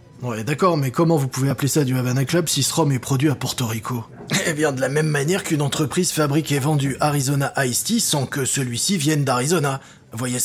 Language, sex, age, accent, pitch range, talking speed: French, male, 20-39, French, 125-165 Hz, 225 wpm